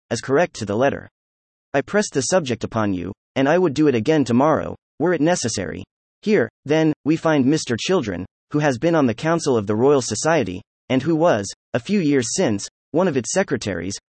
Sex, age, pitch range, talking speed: male, 30-49, 110-160 Hz, 205 wpm